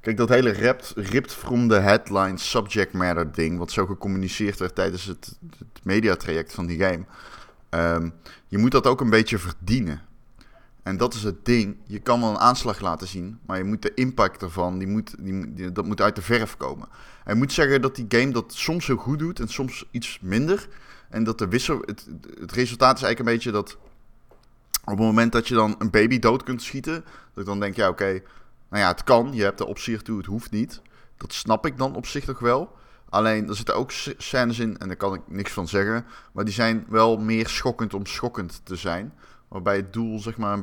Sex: male